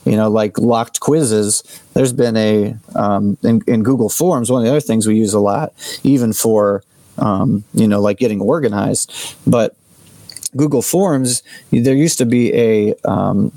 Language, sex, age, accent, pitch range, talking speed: English, male, 30-49, American, 110-135 Hz, 170 wpm